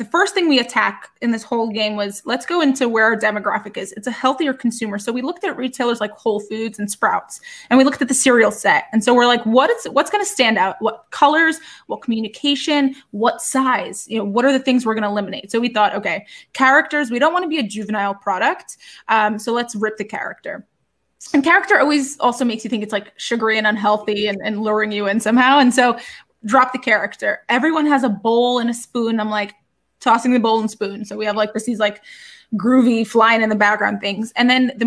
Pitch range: 210-260 Hz